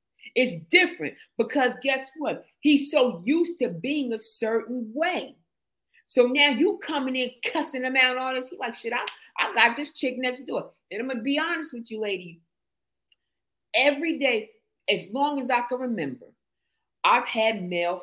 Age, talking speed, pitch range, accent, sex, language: 40-59, 175 wpm, 225-280 Hz, American, female, English